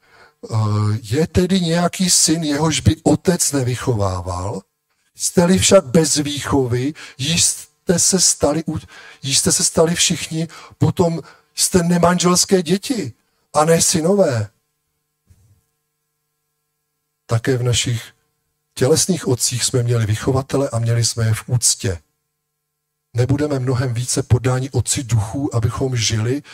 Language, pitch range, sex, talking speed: Czech, 110-150 Hz, male, 110 wpm